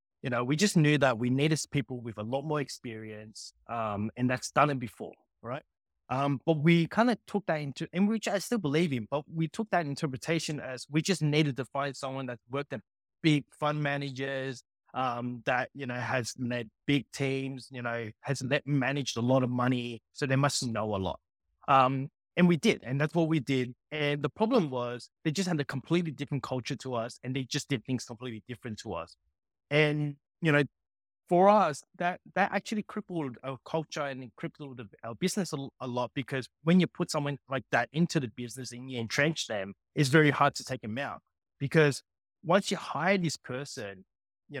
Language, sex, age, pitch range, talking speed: English, male, 20-39, 120-150 Hz, 205 wpm